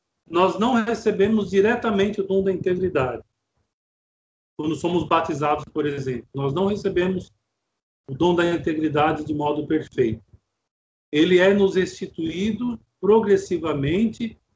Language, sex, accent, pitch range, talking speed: Portuguese, male, Brazilian, 135-195 Hz, 115 wpm